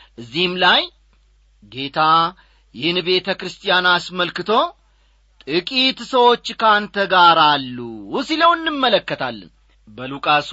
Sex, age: male, 40-59